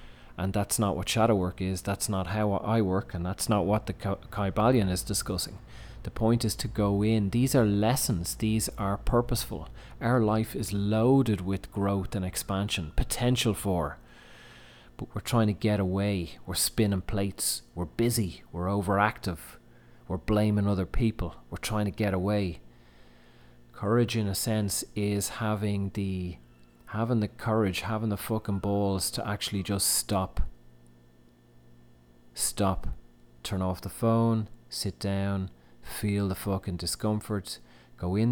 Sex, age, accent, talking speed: male, 30-49, Irish, 150 wpm